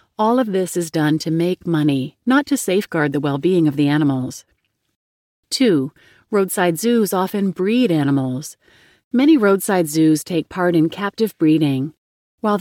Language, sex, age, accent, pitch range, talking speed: English, female, 40-59, American, 155-205 Hz, 150 wpm